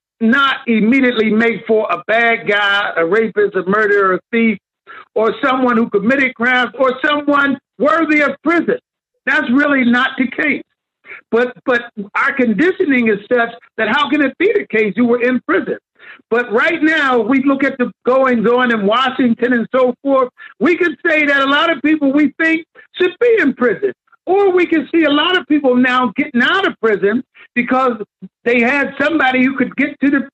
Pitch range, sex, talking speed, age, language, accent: 240-310 Hz, male, 185 wpm, 50-69, English, American